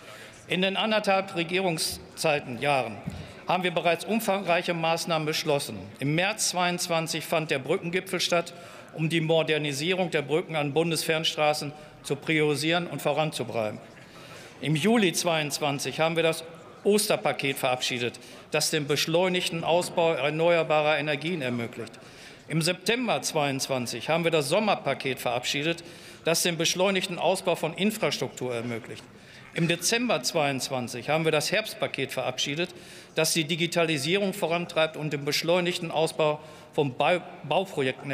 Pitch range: 150-180 Hz